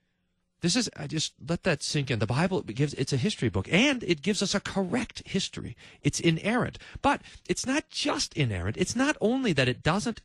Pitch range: 115-190 Hz